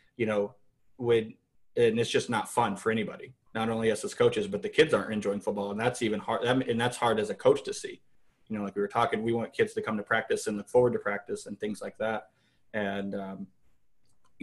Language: English